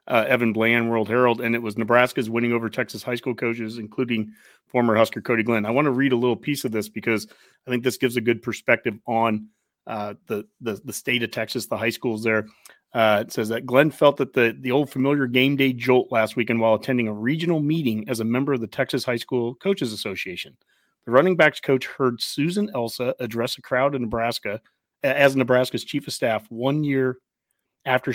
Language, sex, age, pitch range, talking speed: English, male, 30-49, 115-135 Hz, 215 wpm